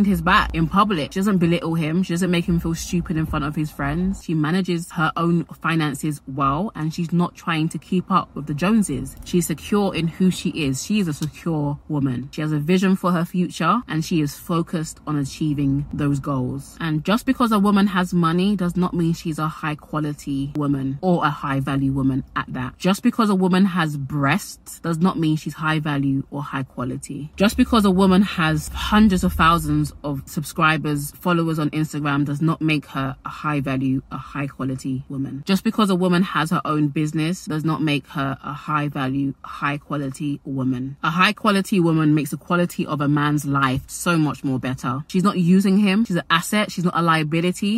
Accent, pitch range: British, 145-185 Hz